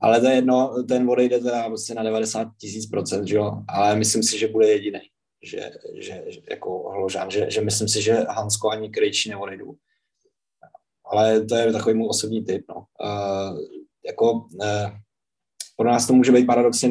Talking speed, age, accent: 165 wpm, 20-39, native